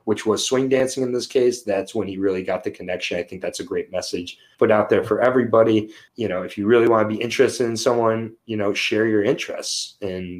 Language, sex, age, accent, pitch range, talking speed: English, male, 30-49, American, 105-125 Hz, 240 wpm